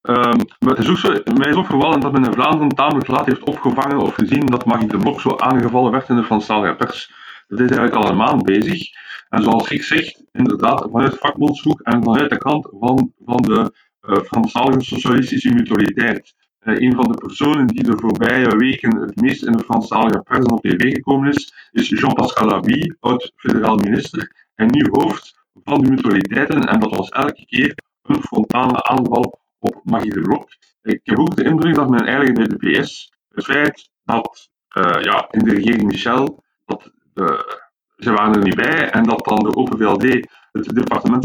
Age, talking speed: 50-69, 190 wpm